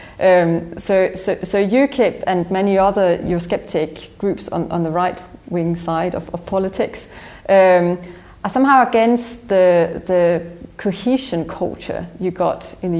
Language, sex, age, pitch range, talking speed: English, female, 30-49, 170-195 Hz, 150 wpm